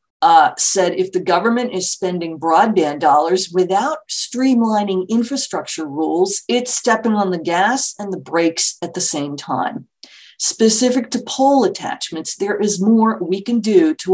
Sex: female